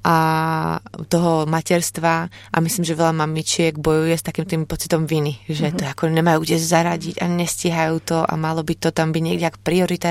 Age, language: 20-39, Czech